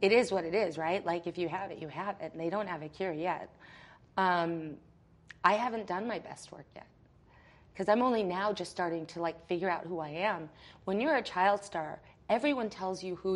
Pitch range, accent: 165-210 Hz, American